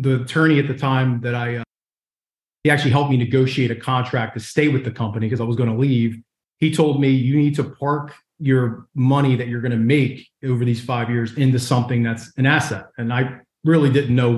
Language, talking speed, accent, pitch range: English, 225 wpm, American, 120-145 Hz